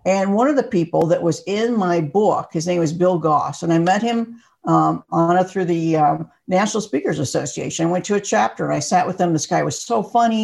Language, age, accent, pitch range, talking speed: English, 60-79, American, 165-215 Hz, 245 wpm